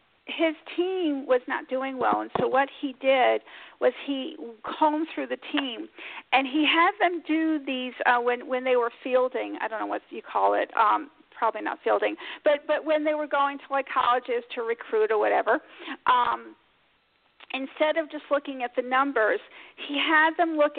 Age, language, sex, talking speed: 50-69, English, female, 185 wpm